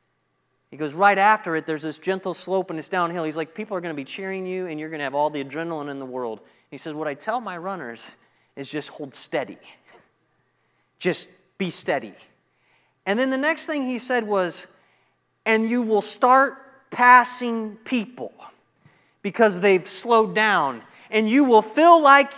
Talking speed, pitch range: 185 wpm, 195-270 Hz